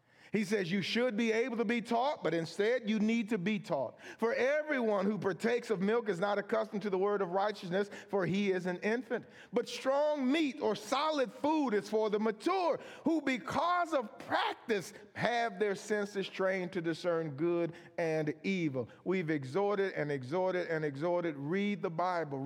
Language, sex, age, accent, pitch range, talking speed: English, male, 50-69, American, 180-250 Hz, 180 wpm